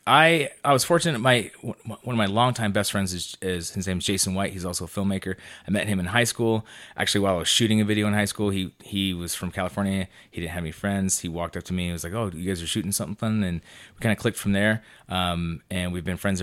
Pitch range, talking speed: 90-105 Hz, 270 wpm